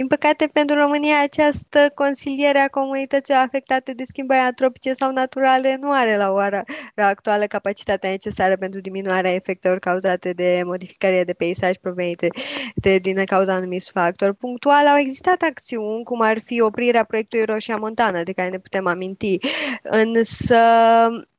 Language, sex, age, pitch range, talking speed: Romanian, female, 20-39, 190-245 Hz, 145 wpm